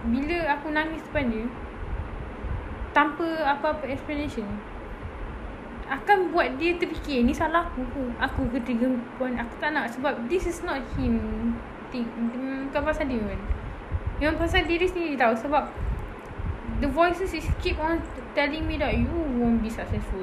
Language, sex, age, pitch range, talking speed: Malay, female, 10-29, 240-330 Hz, 140 wpm